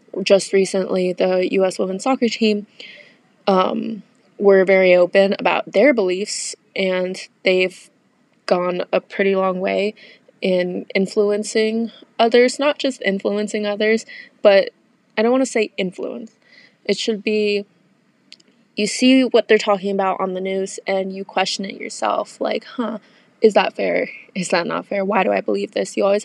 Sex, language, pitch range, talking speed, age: female, English, 190-225 Hz, 155 wpm, 20-39